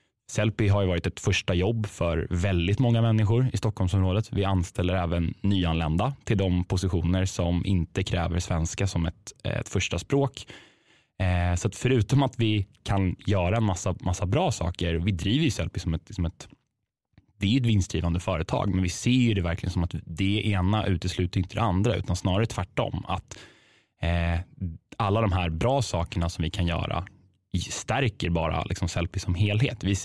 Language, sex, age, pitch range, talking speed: Swedish, male, 10-29, 90-110 Hz, 170 wpm